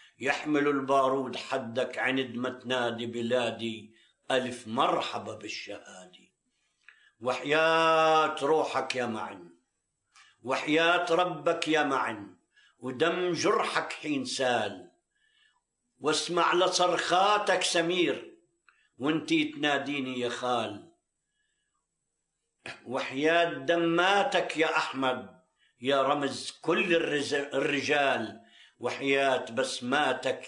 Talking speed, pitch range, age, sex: 75 wpm, 125-170 Hz, 50-69, male